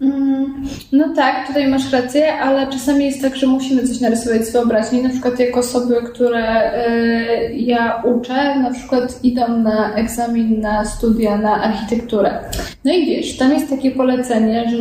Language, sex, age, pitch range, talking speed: Polish, female, 10-29, 235-260 Hz, 160 wpm